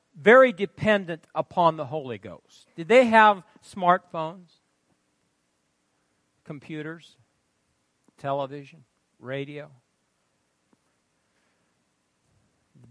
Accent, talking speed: American, 65 wpm